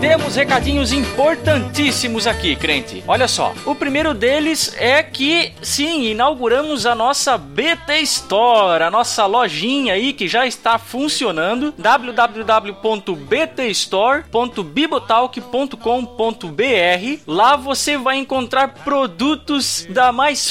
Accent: Brazilian